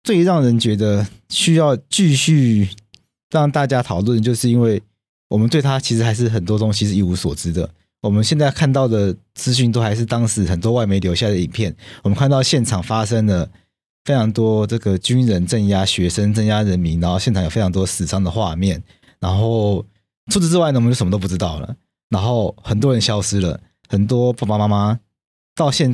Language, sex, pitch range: Chinese, male, 95-120 Hz